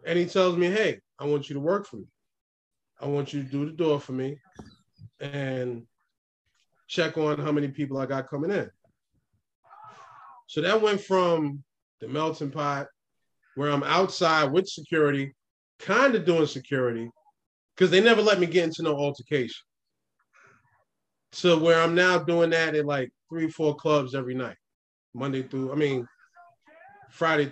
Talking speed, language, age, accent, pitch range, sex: 160 wpm, English, 20-39, American, 135-175 Hz, male